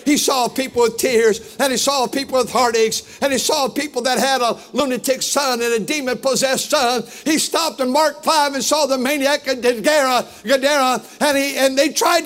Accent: American